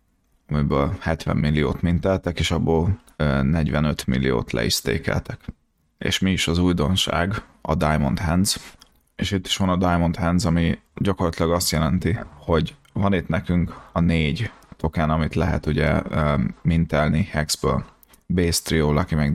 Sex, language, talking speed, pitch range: male, Hungarian, 145 wpm, 80-95 Hz